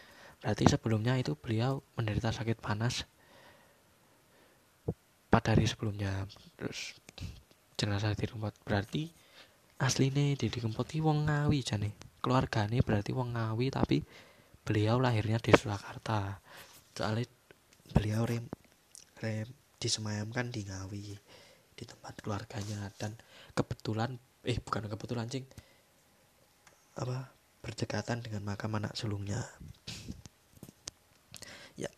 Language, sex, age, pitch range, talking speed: Indonesian, male, 20-39, 110-125 Hz, 100 wpm